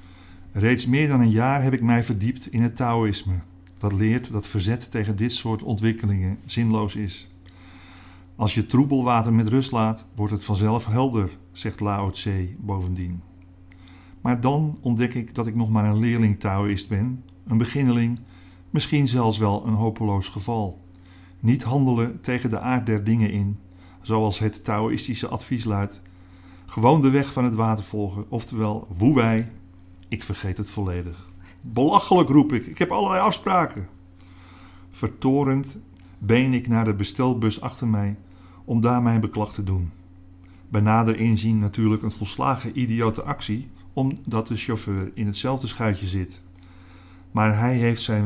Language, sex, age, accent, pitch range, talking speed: Dutch, male, 50-69, Dutch, 95-120 Hz, 155 wpm